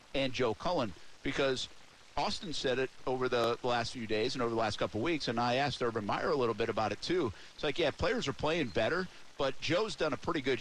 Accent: American